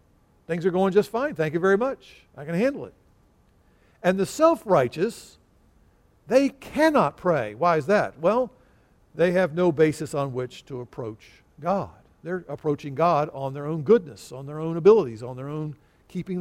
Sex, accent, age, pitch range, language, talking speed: male, American, 50-69, 140-190 Hz, English, 170 wpm